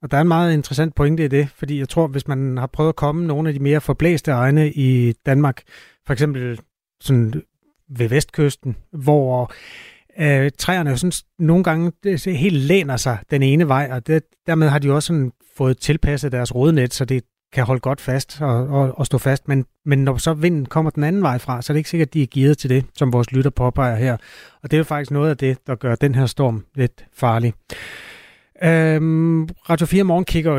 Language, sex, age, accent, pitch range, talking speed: Danish, male, 30-49, native, 125-150 Hz, 215 wpm